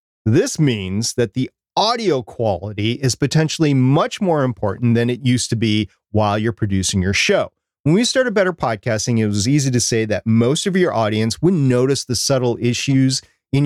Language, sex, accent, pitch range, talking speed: English, male, American, 105-150 Hz, 185 wpm